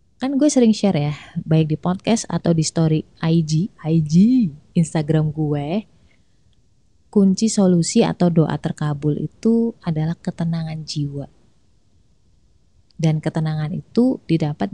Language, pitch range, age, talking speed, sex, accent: Indonesian, 155-210 Hz, 20-39, 115 wpm, female, native